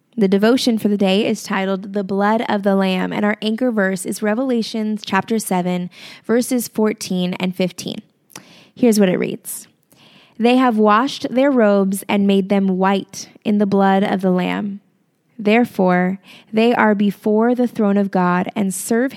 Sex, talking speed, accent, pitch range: female, 165 wpm, American, 190-225 Hz